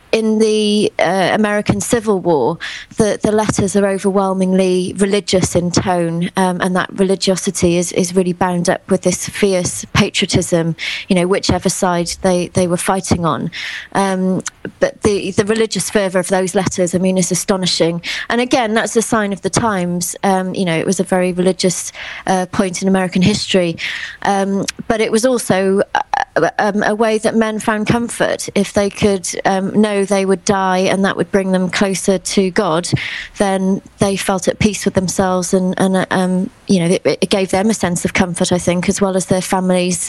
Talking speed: 190 wpm